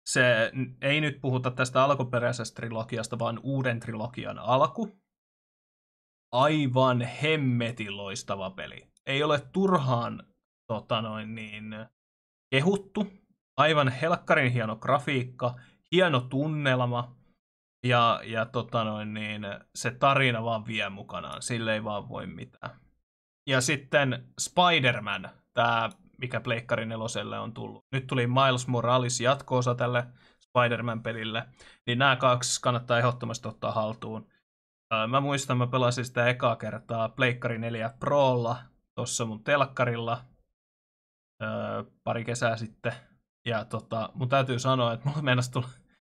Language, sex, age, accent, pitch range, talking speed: Finnish, male, 20-39, native, 115-130 Hz, 115 wpm